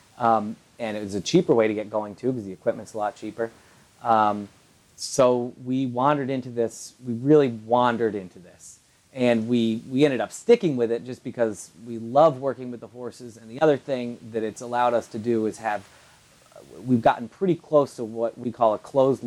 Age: 30-49